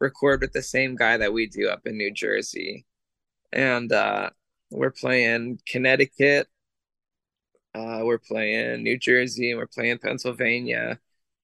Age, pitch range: 20-39, 115-135 Hz